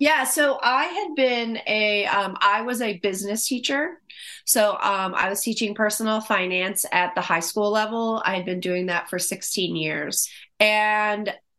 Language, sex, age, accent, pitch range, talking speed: English, female, 30-49, American, 170-215 Hz, 170 wpm